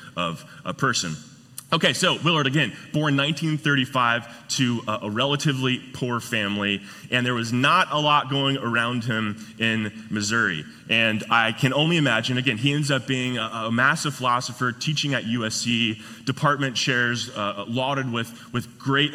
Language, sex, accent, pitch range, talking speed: English, male, American, 105-130 Hz, 155 wpm